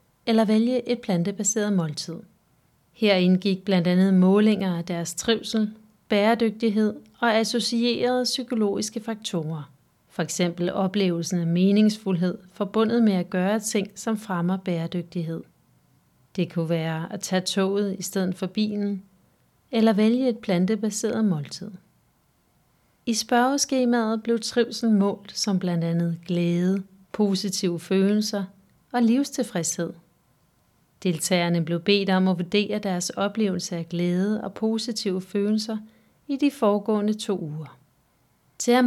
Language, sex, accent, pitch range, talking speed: Danish, female, native, 185-225 Hz, 120 wpm